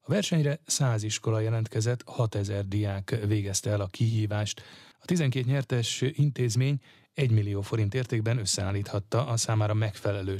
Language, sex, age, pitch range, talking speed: Hungarian, male, 30-49, 100-120 Hz, 135 wpm